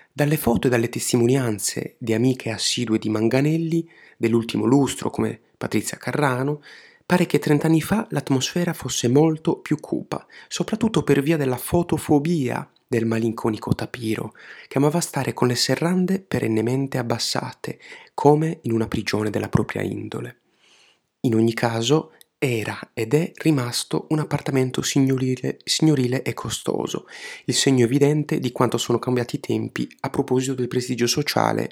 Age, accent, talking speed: 30-49, native, 140 wpm